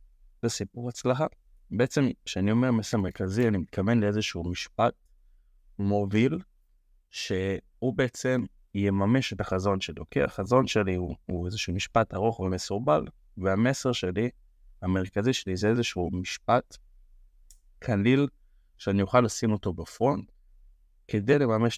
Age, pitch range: 30-49, 95-120 Hz